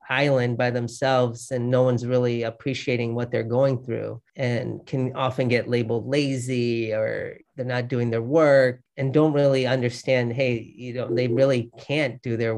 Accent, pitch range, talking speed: American, 120-140 Hz, 170 wpm